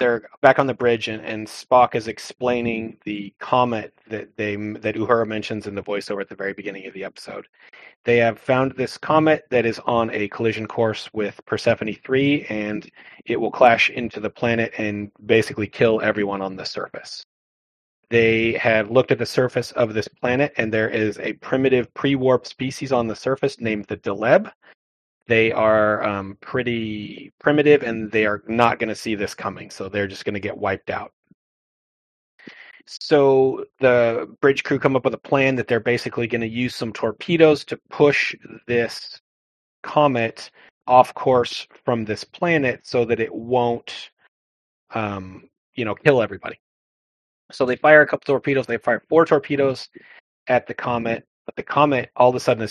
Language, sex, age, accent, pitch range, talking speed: English, male, 30-49, American, 105-130 Hz, 175 wpm